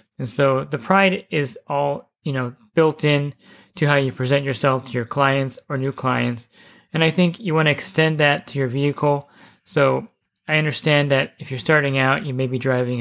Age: 20-39